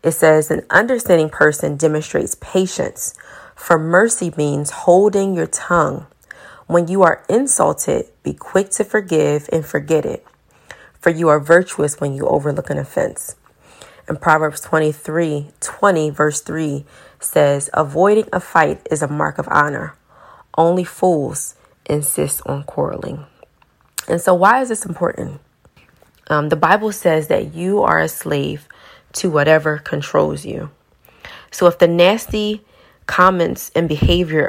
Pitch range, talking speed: 155-190 Hz, 140 wpm